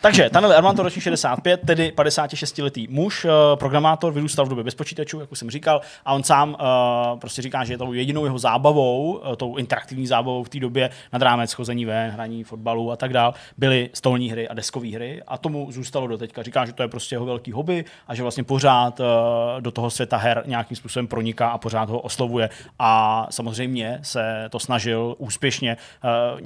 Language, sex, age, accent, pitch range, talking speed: Czech, male, 20-39, native, 115-135 Hz, 195 wpm